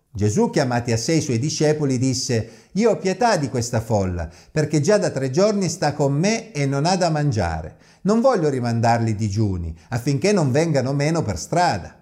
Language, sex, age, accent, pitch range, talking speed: Italian, male, 50-69, native, 110-165 Hz, 185 wpm